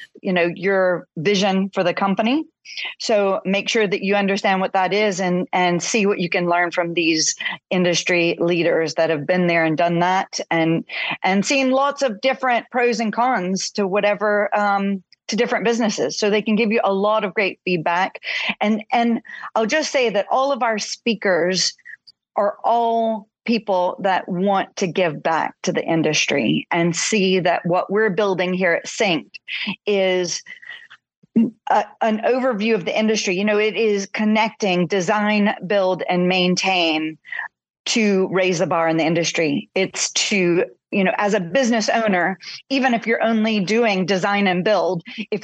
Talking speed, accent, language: 170 wpm, American, English